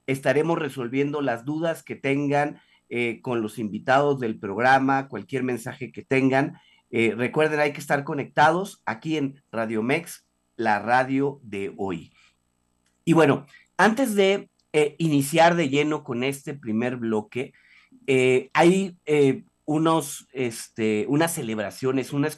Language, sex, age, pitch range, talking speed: Spanish, male, 40-59, 115-160 Hz, 135 wpm